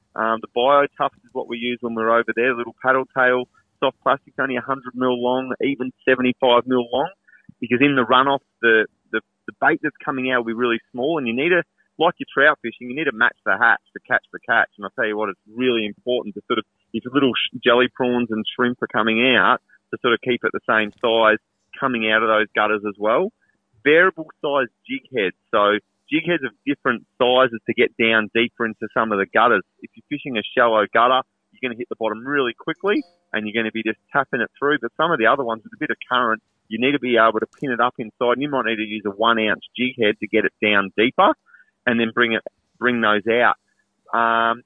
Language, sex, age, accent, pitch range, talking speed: English, male, 30-49, Australian, 110-130 Hz, 240 wpm